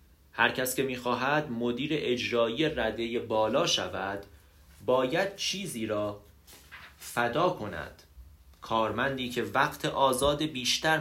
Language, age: Persian, 30-49